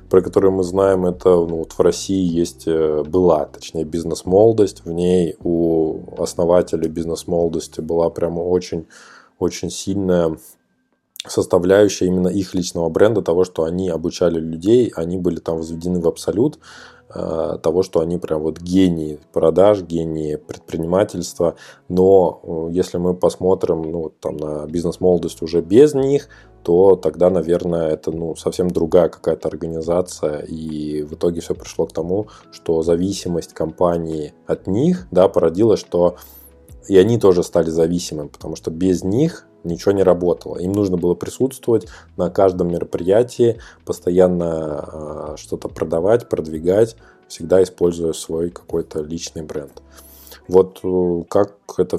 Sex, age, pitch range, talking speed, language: male, 20-39, 80-90 Hz, 130 wpm, Russian